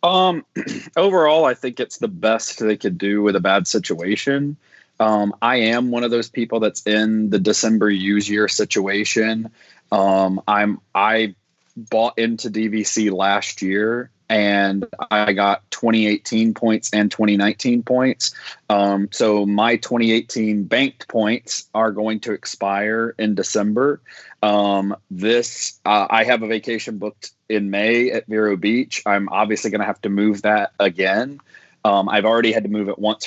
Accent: American